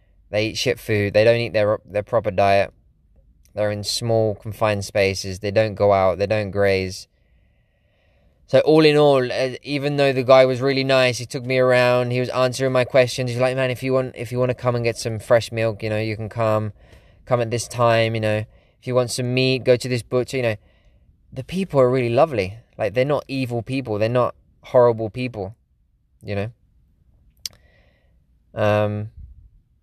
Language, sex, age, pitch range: English, male, 20-39, 100-125 Hz